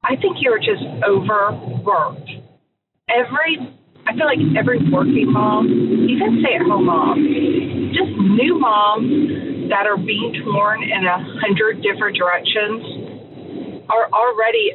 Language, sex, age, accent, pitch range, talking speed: English, female, 40-59, American, 205-330 Hz, 120 wpm